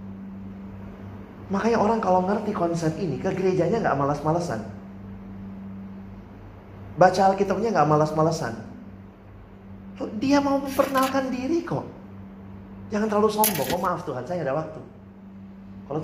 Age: 30-49